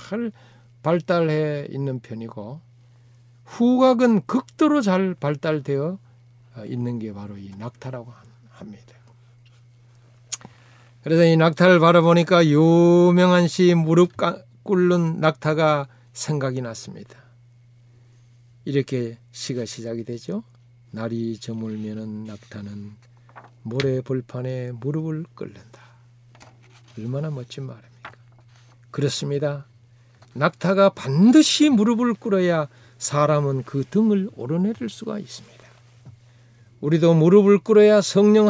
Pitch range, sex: 120-165 Hz, male